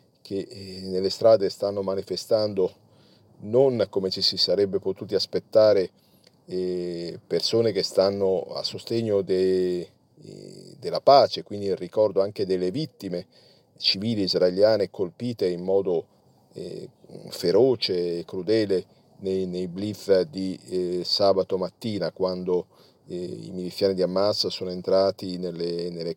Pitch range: 90-110 Hz